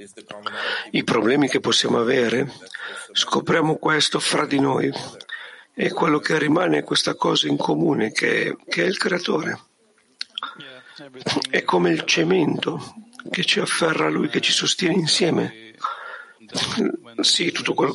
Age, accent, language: 50-69, native, Italian